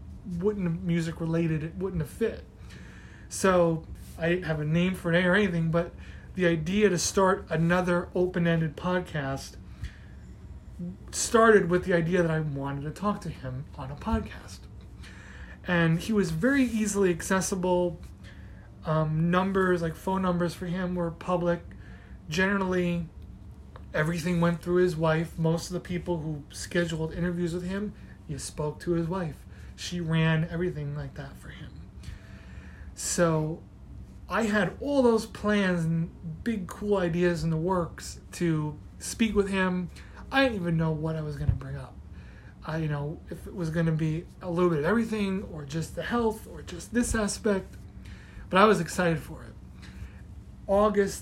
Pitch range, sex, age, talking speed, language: 155-185 Hz, male, 30-49, 165 wpm, English